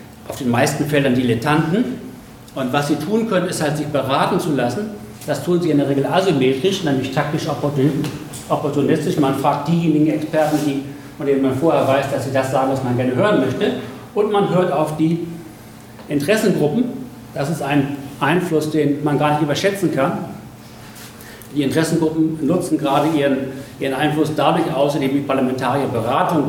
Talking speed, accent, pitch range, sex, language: 160 wpm, German, 130-155 Hz, male, German